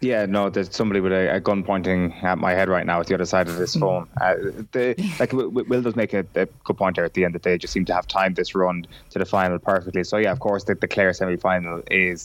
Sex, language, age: male, English, 20-39